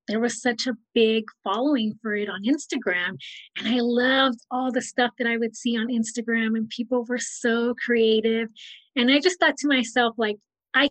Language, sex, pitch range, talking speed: English, female, 220-255 Hz, 195 wpm